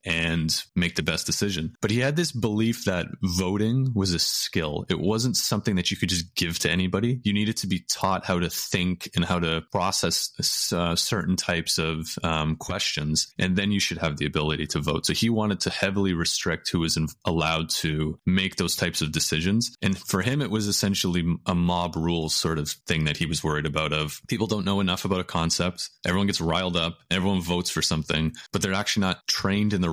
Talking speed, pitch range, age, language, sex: 215 wpm, 80-95 Hz, 20-39, English, male